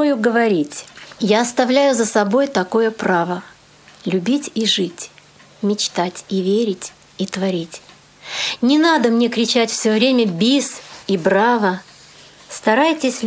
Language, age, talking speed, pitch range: Russian, 30-49, 115 wpm, 195-255 Hz